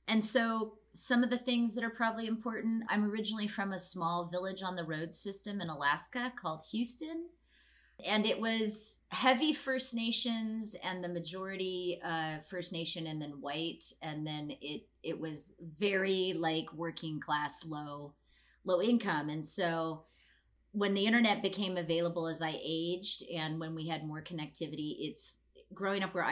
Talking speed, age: 160 wpm, 30-49